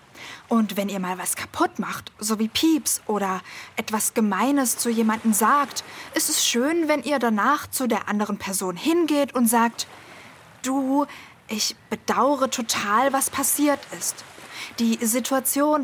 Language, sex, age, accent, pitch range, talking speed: German, female, 20-39, German, 215-275 Hz, 145 wpm